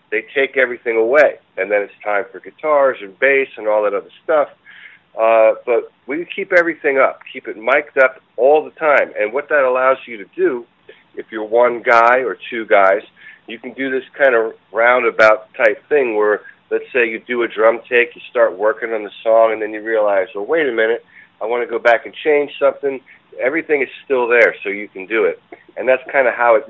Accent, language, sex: American, English, male